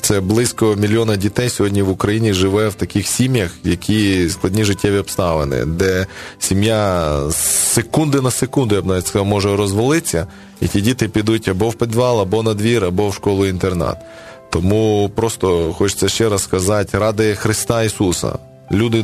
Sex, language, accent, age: male, Ukrainian, native, 20-39